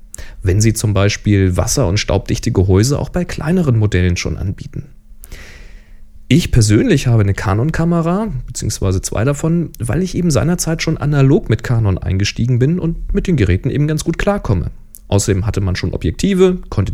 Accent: German